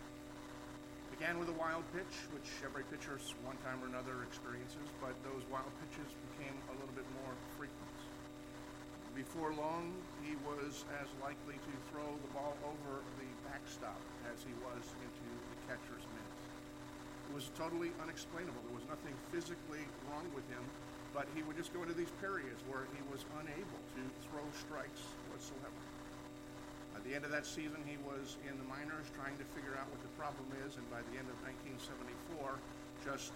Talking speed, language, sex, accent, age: 175 wpm, English, male, American, 50-69